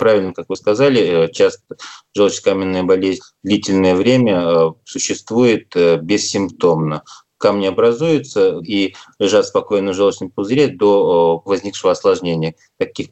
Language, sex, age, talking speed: Russian, male, 20-39, 105 wpm